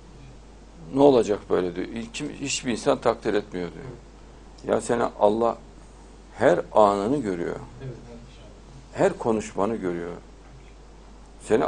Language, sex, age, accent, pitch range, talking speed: Turkish, male, 60-79, native, 105-140 Hz, 105 wpm